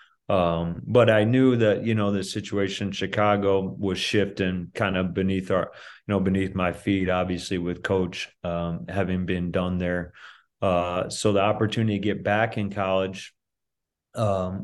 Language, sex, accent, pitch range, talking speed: English, male, American, 90-100 Hz, 165 wpm